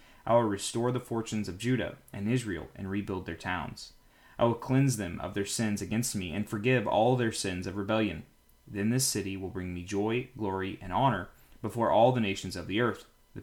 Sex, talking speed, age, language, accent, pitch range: male, 210 wpm, 20-39, English, American, 95-120 Hz